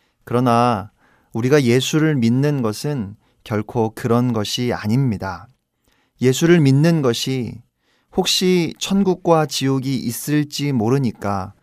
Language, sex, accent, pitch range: Korean, male, native, 115-145 Hz